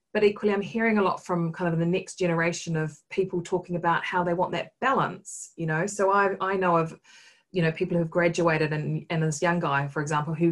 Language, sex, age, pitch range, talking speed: English, female, 30-49, 165-215 Hz, 230 wpm